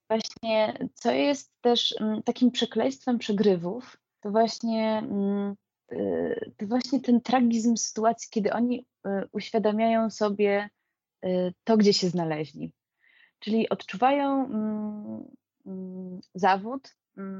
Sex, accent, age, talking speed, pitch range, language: female, native, 20-39, 85 wpm, 195-235 Hz, Polish